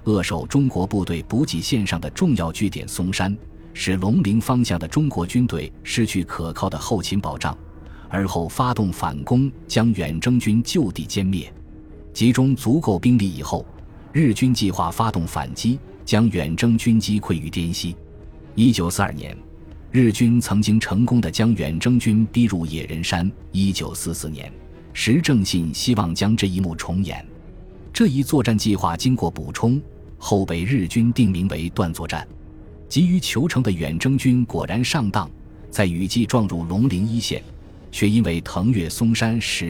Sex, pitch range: male, 80-115 Hz